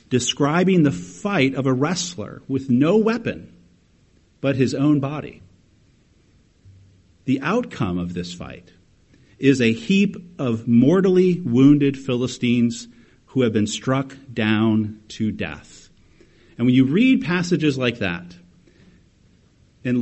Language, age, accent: English, 40-59, American